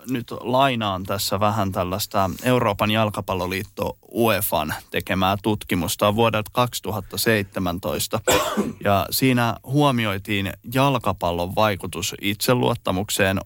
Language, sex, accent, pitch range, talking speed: Finnish, male, native, 95-115 Hz, 80 wpm